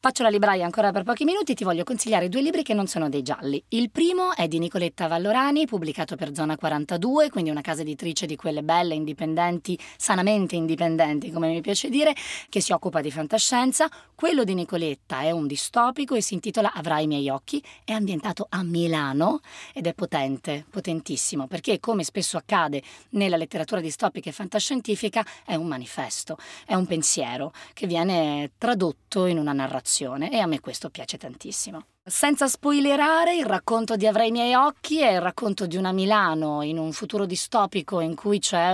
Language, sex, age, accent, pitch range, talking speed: Italian, female, 20-39, native, 165-225 Hz, 180 wpm